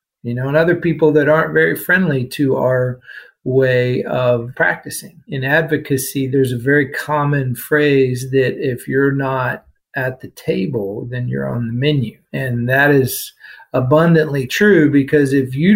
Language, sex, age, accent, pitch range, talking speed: English, male, 50-69, American, 130-155 Hz, 155 wpm